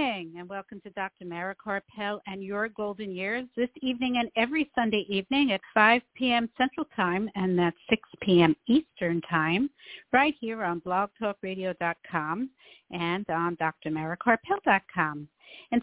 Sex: female